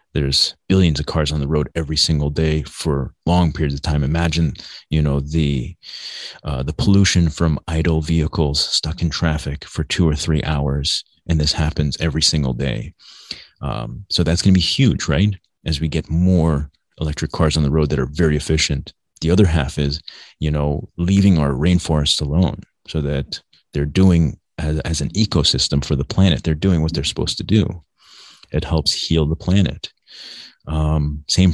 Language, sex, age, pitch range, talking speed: English, male, 30-49, 75-85 Hz, 180 wpm